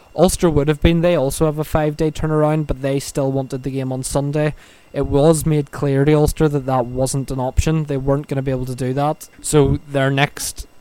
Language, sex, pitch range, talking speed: English, male, 135-150 Hz, 235 wpm